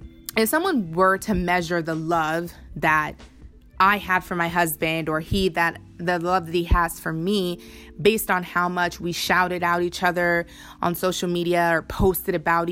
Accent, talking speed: American, 180 wpm